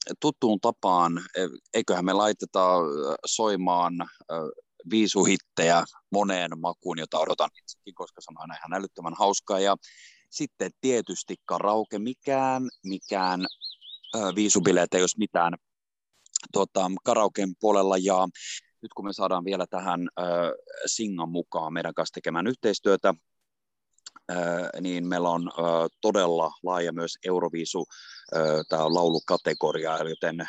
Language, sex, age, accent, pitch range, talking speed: Finnish, male, 30-49, native, 85-100 Hz, 110 wpm